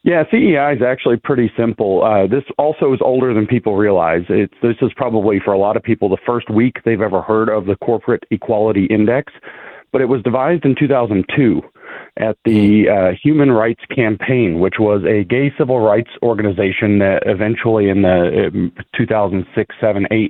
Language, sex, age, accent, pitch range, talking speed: English, male, 40-59, American, 105-130 Hz, 175 wpm